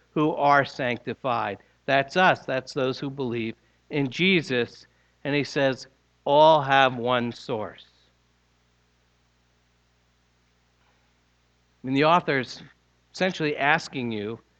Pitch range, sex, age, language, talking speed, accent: 120-180 Hz, male, 60-79, English, 100 wpm, American